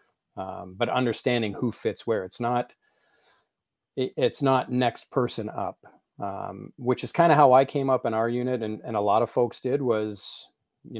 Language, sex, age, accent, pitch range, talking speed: English, male, 40-59, American, 105-125 Hz, 180 wpm